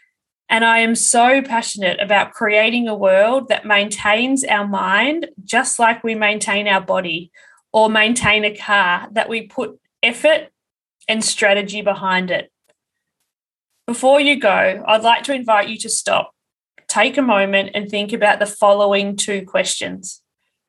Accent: Australian